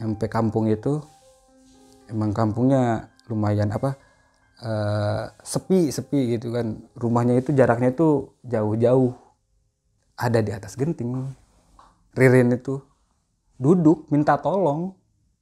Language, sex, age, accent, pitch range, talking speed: Indonesian, male, 20-39, native, 105-140 Hz, 95 wpm